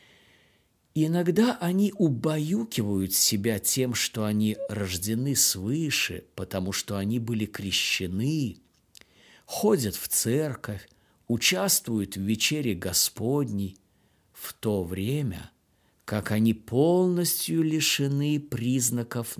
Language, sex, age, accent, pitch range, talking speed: Russian, male, 50-69, native, 100-145 Hz, 90 wpm